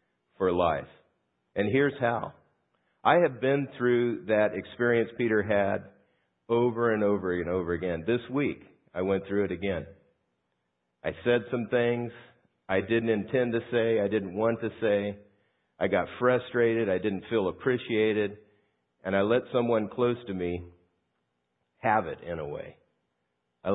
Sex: male